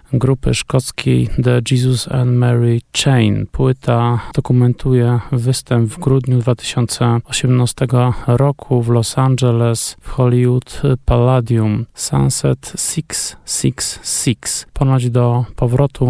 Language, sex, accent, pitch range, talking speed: Polish, male, native, 115-130 Hz, 95 wpm